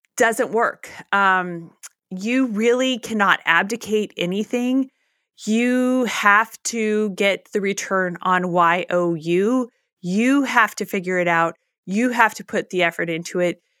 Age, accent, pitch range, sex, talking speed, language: 30-49, American, 195-235 Hz, female, 130 wpm, English